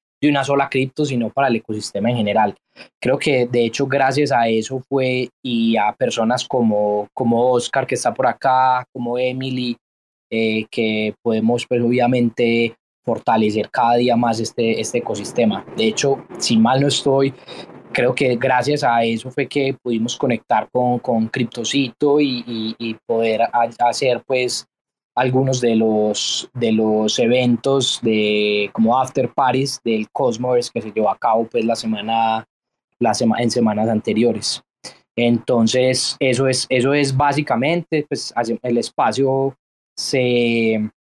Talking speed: 145 wpm